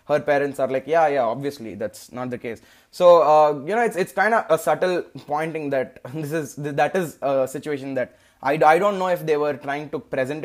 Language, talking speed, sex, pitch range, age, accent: Telugu, 230 wpm, male, 140-175 Hz, 20-39, native